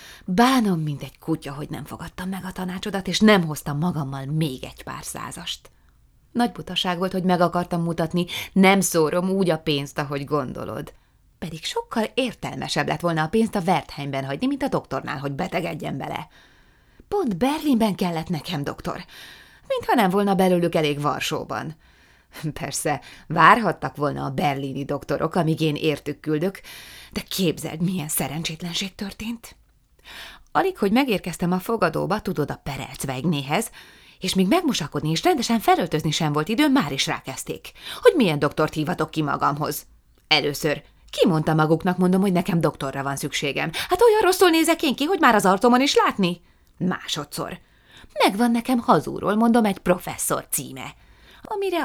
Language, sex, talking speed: Hungarian, female, 160 wpm